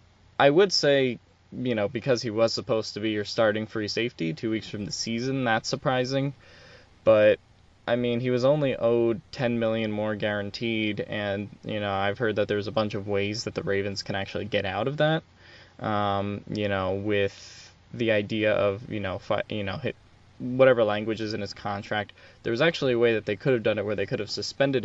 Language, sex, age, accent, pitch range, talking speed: English, male, 10-29, American, 100-120 Hz, 215 wpm